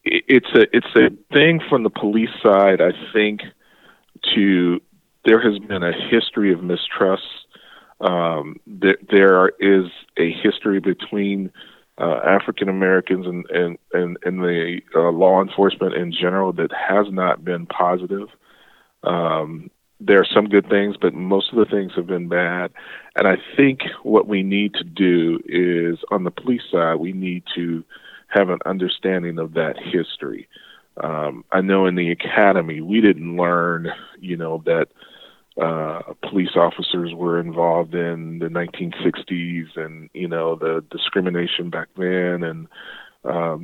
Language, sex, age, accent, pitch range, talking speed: English, male, 40-59, American, 85-95 Hz, 150 wpm